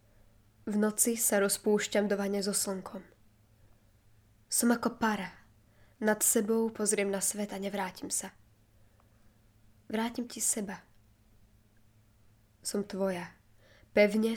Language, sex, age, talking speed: Slovak, female, 10-29, 105 wpm